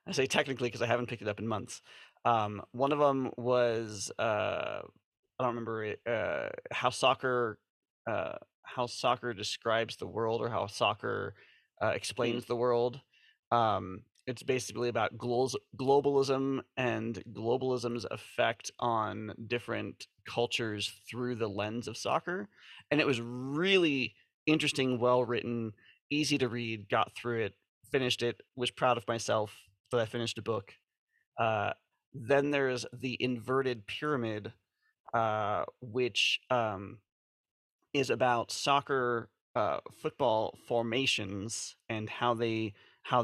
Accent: American